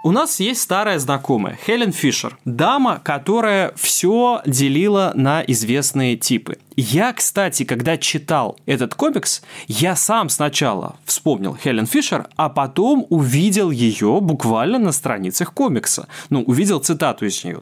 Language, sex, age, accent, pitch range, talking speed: Russian, male, 20-39, native, 130-185 Hz, 135 wpm